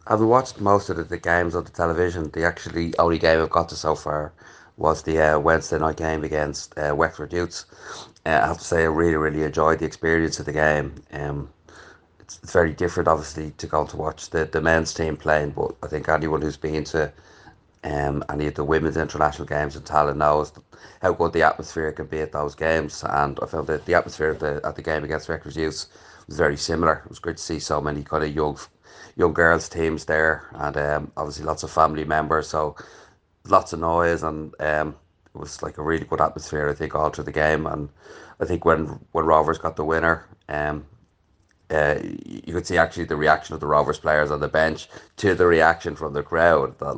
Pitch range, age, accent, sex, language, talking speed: 75-80 Hz, 30-49, Irish, male, English, 220 wpm